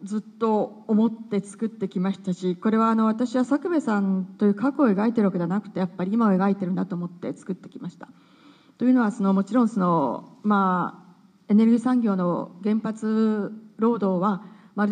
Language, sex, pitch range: Japanese, female, 185-215 Hz